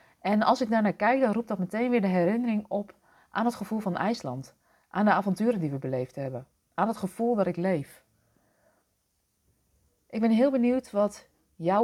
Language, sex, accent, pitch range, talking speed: Dutch, female, Dutch, 165-205 Hz, 190 wpm